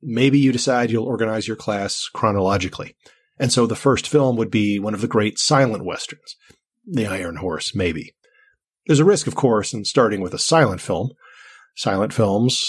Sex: male